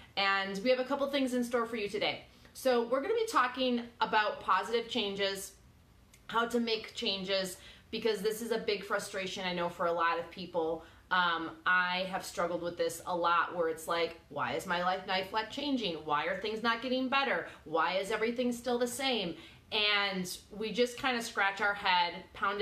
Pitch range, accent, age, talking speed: 180-235 Hz, American, 20-39, 200 wpm